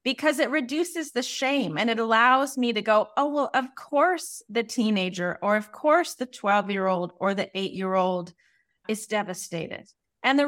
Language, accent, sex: English, American, female